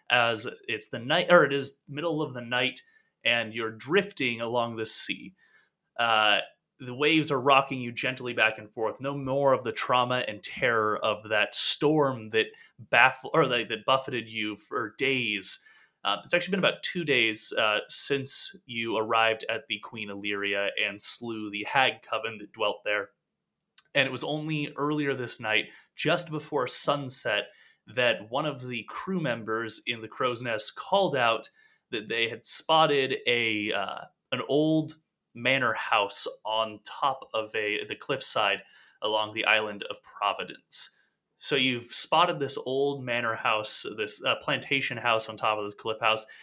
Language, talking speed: English, 165 wpm